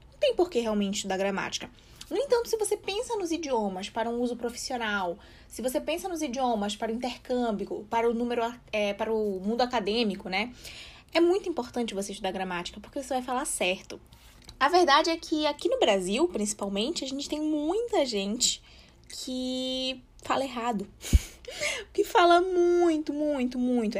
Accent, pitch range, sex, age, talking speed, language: Brazilian, 210-305 Hz, female, 20-39, 160 wpm, Portuguese